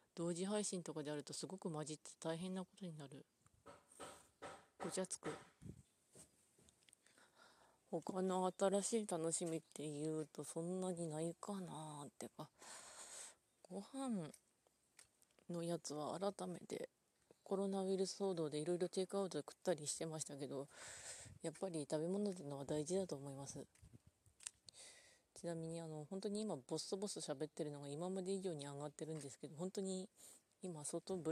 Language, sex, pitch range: Japanese, female, 150-190 Hz